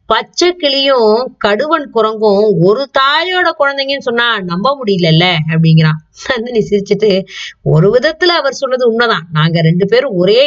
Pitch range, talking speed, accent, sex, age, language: 170-235 Hz, 125 wpm, native, female, 20-39, Tamil